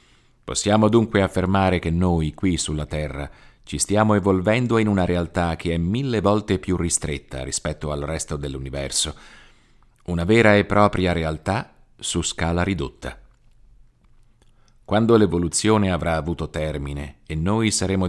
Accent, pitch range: native, 80-105 Hz